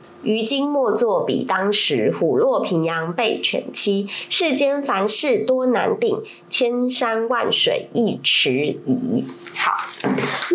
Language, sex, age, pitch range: Chinese, female, 30-49, 205-335 Hz